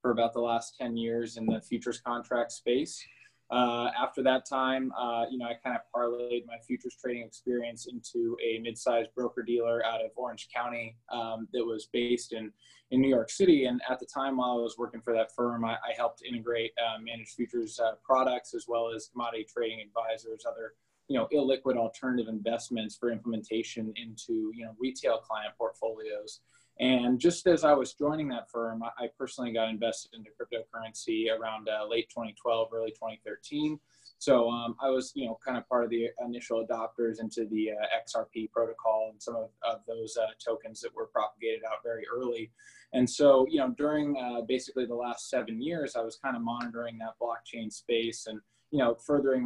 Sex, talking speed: male, 190 wpm